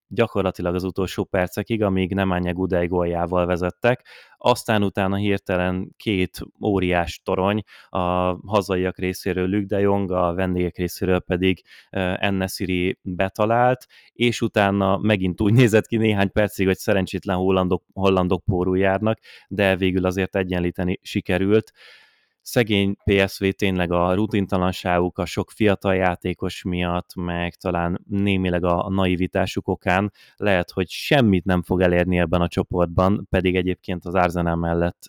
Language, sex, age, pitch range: Hungarian, male, 20-39, 90-100 Hz